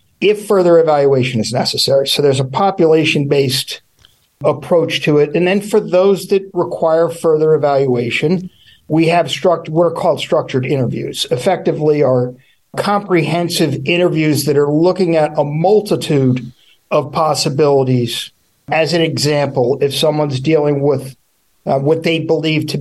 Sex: male